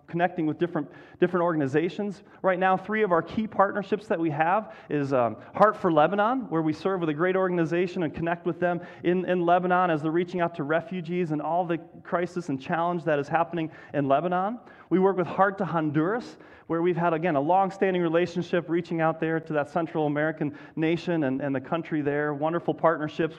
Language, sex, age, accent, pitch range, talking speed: English, male, 30-49, American, 150-180 Hz, 205 wpm